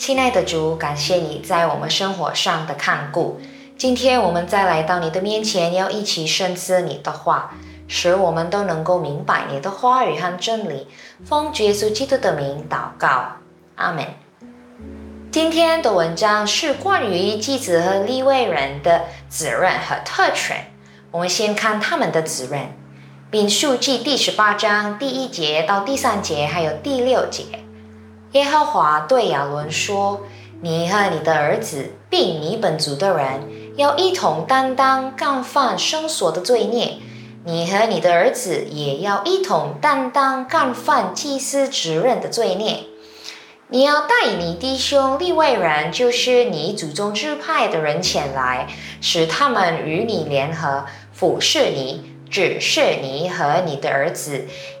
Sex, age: female, 20-39